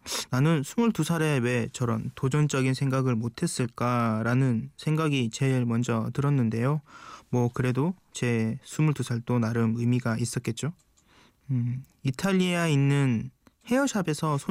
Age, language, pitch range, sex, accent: 20-39, Korean, 120-145 Hz, male, native